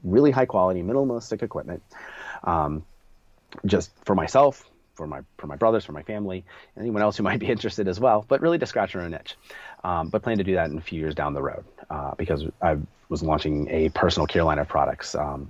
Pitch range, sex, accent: 80-110 Hz, male, American